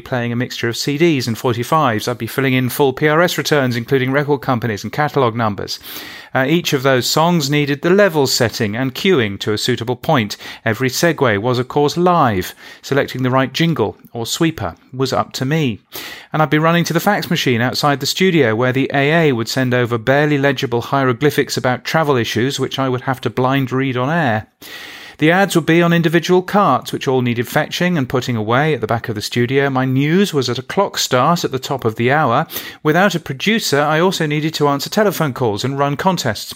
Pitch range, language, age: 125-160 Hz, English, 40-59